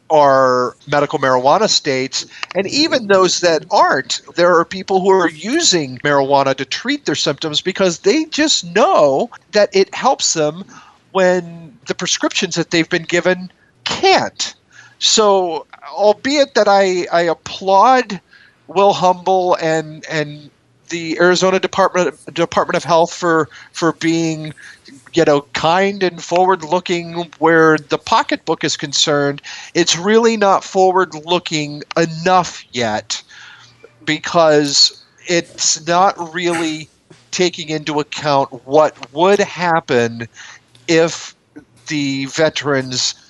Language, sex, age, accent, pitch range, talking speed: English, male, 50-69, American, 150-185 Hz, 115 wpm